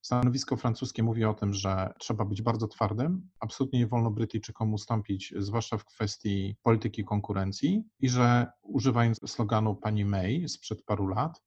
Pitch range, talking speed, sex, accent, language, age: 105-120 Hz, 150 wpm, male, native, Polish, 40-59